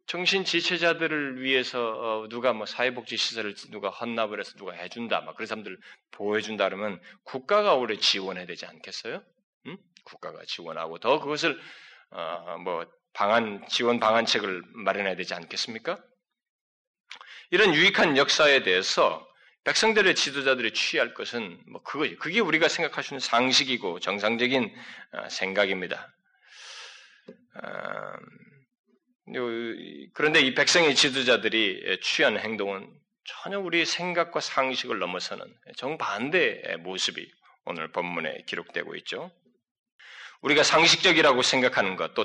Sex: male